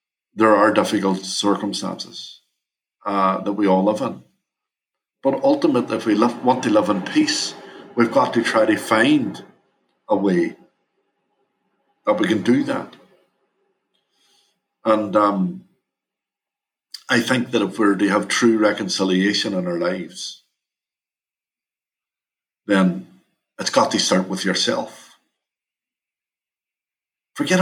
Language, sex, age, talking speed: English, male, 50-69, 120 wpm